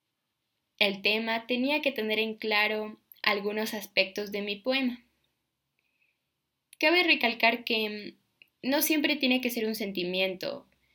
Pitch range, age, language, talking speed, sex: 200-255 Hz, 10-29, Spanish, 120 wpm, female